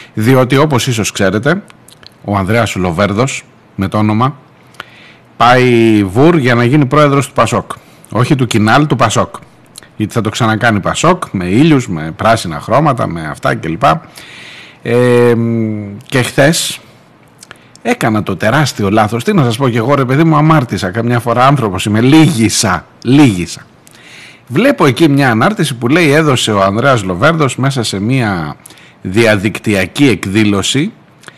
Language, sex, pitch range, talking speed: Greek, male, 110-145 Hz, 140 wpm